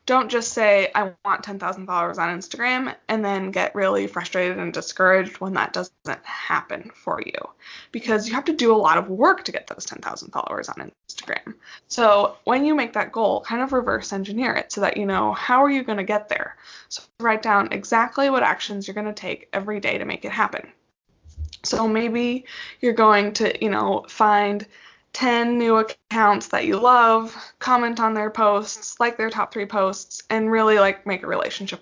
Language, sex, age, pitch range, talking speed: English, female, 20-39, 190-235 Hz, 200 wpm